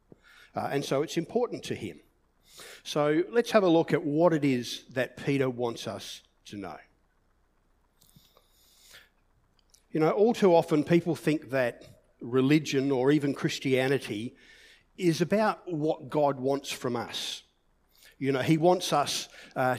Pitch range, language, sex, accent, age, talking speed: 120-160 Hz, English, male, Australian, 50-69, 145 wpm